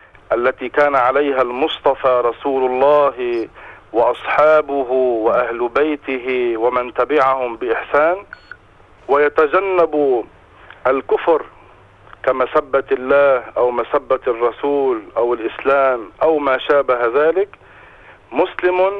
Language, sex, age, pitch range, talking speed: English, male, 50-69, 135-165 Hz, 80 wpm